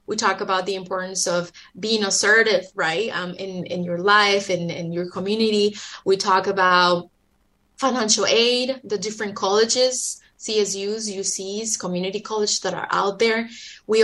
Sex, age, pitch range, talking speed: female, 20-39, 185-220 Hz, 155 wpm